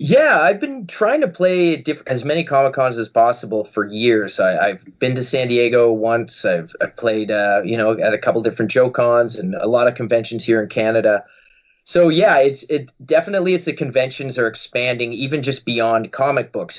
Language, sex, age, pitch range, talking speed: English, male, 20-39, 110-135 Hz, 185 wpm